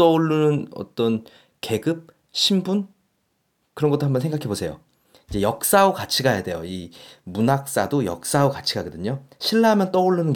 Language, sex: Korean, male